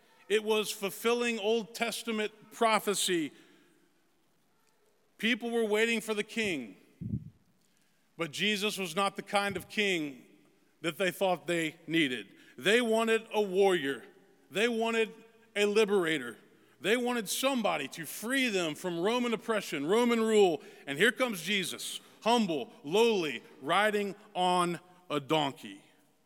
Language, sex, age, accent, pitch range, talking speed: English, male, 40-59, American, 180-225 Hz, 125 wpm